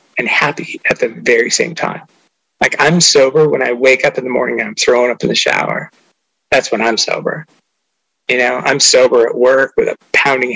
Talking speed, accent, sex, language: 210 wpm, American, male, English